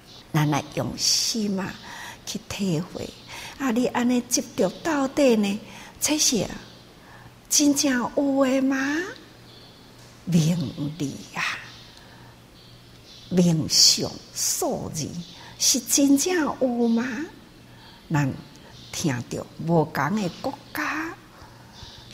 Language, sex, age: Chinese, female, 60-79